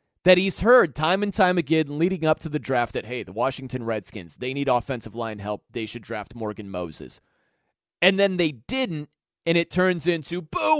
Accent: American